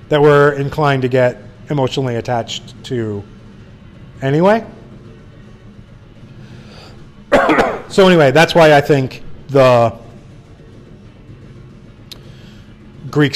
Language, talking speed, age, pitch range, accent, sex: English, 75 wpm, 30-49, 115-140 Hz, American, male